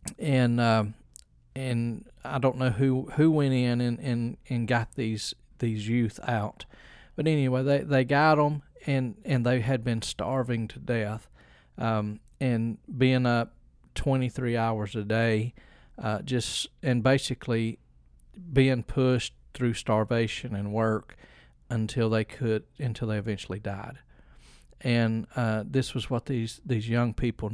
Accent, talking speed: American, 150 wpm